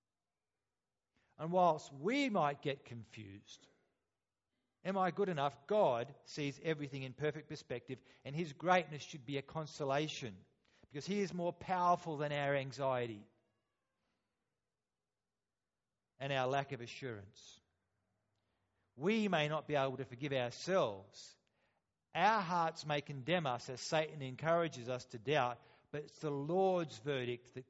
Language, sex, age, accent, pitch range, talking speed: English, male, 40-59, Australian, 120-170 Hz, 130 wpm